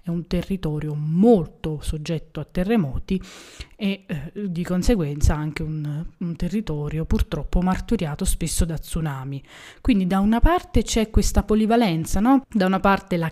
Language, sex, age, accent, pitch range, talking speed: Italian, female, 20-39, native, 155-205 Hz, 145 wpm